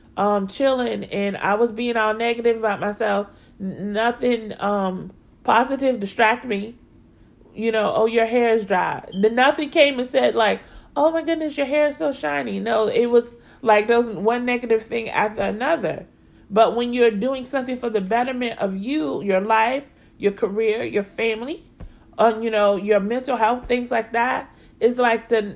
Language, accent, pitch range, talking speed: English, American, 225-290 Hz, 180 wpm